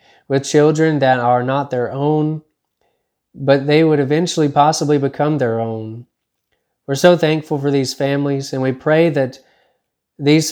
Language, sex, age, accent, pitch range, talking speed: English, male, 20-39, American, 130-155 Hz, 150 wpm